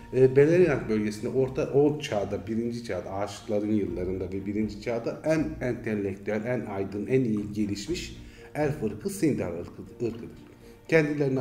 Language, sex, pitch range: Turkish, male, 100-125 Hz